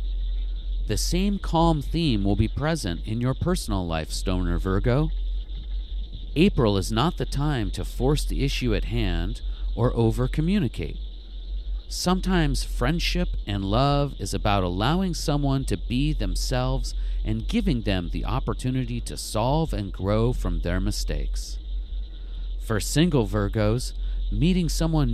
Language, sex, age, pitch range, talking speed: English, male, 40-59, 85-135 Hz, 130 wpm